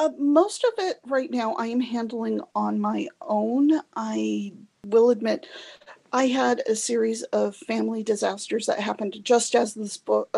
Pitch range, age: 200-255 Hz, 40-59